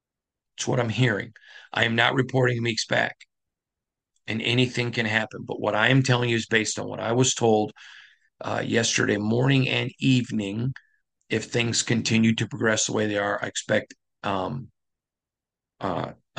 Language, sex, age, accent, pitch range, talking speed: English, male, 40-59, American, 105-125 Hz, 165 wpm